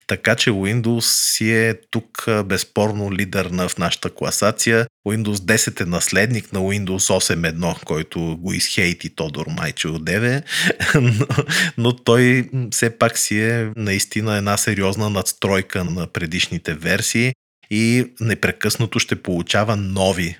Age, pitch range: 30-49, 90-115 Hz